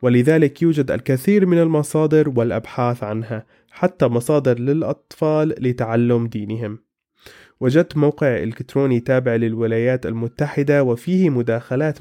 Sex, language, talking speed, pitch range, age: male, Arabic, 100 wpm, 115-145 Hz, 20-39